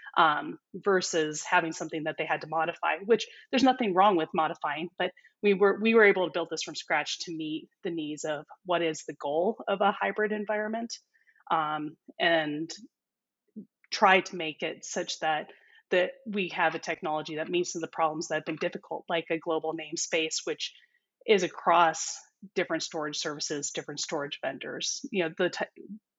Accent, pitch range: American, 160-205 Hz